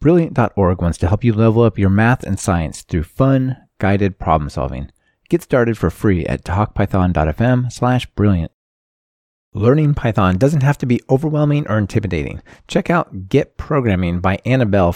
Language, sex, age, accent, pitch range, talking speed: English, male, 30-49, American, 95-130 Hz, 150 wpm